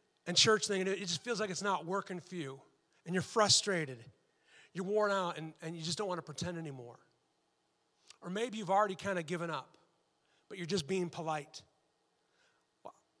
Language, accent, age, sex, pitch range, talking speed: English, American, 30-49, male, 190-250 Hz, 190 wpm